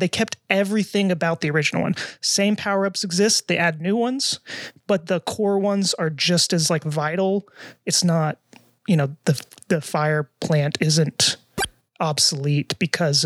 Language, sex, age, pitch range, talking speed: English, male, 30-49, 155-200 Hz, 155 wpm